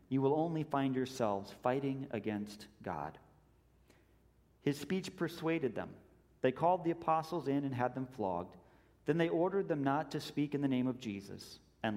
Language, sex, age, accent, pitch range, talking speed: English, male, 40-59, American, 135-180 Hz, 170 wpm